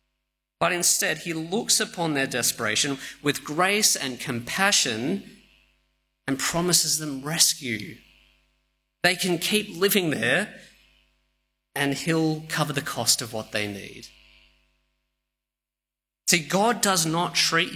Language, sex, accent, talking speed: English, male, Australian, 115 wpm